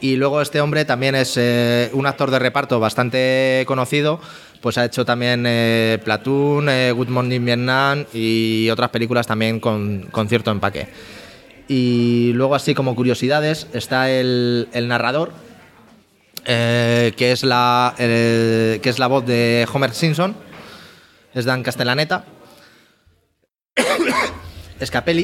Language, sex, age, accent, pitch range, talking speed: Spanish, male, 20-39, Spanish, 120-140 Hz, 125 wpm